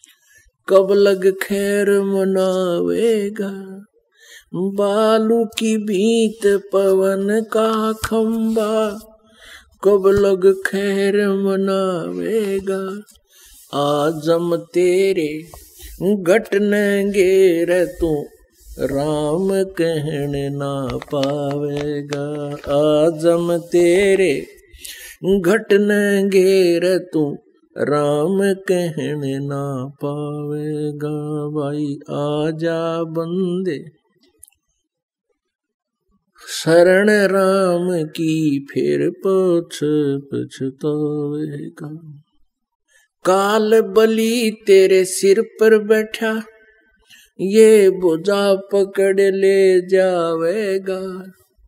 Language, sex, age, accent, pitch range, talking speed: Hindi, male, 50-69, native, 165-215 Hz, 60 wpm